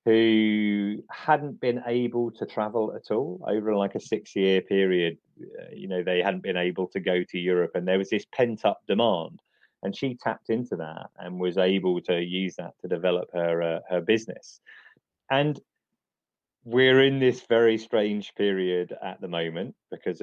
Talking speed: 170 wpm